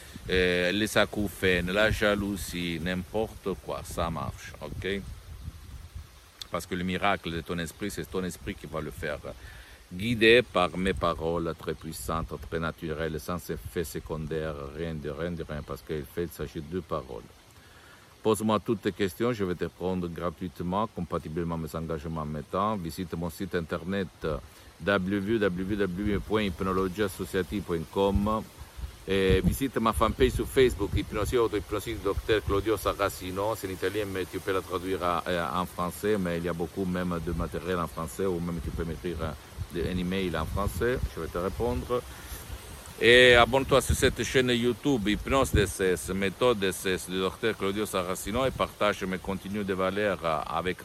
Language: Italian